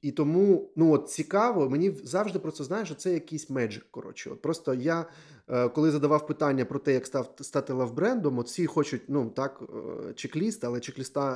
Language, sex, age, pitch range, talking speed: Ukrainian, male, 20-39, 120-155 Hz, 195 wpm